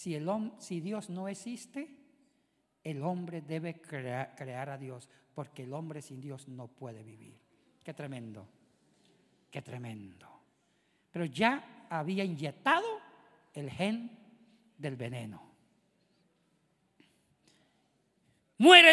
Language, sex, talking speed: Spanish, male, 100 wpm